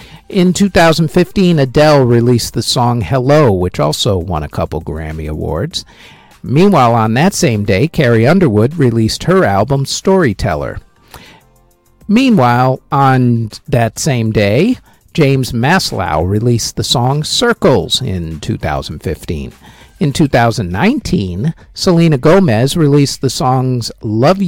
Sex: male